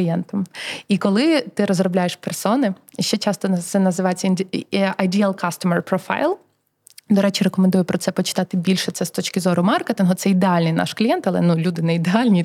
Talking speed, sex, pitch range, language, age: 160 wpm, female, 185-240 Hz, Ukrainian, 20-39